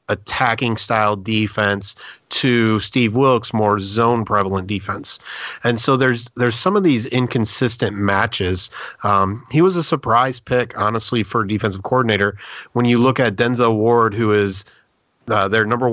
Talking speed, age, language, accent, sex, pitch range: 150 wpm, 30-49, English, American, male, 105-125 Hz